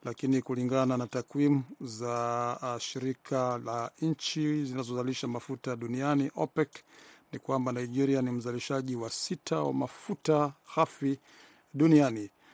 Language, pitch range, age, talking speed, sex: Swahili, 125-145 Hz, 50-69, 110 wpm, male